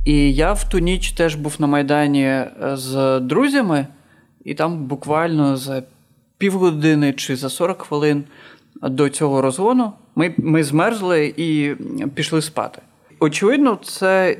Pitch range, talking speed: 140-160 Hz, 130 wpm